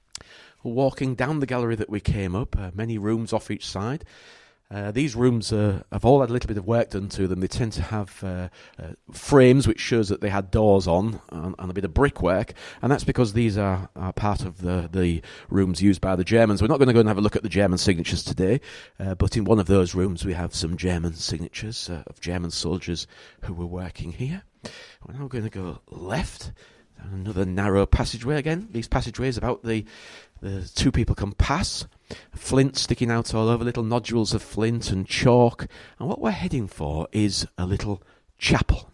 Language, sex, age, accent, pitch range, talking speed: English, male, 40-59, British, 90-115 Hz, 210 wpm